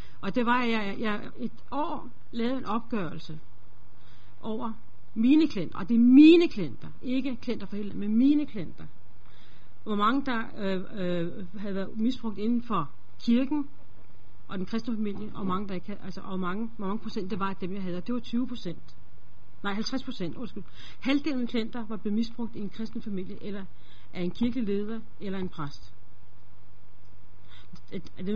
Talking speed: 170 wpm